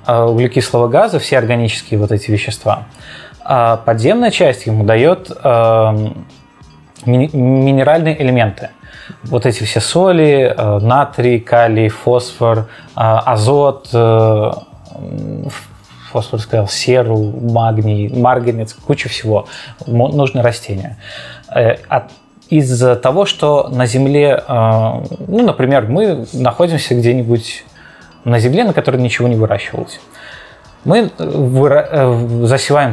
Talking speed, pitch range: 90 wpm, 115-140 Hz